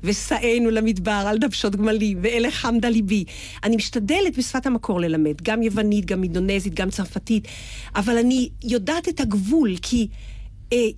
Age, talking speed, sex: 40-59, 140 wpm, female